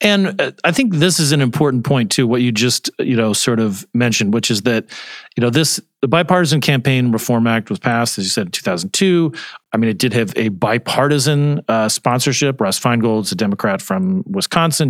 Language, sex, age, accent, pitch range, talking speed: English, male, 40-59, American, 115-150 Hz, 200 wpm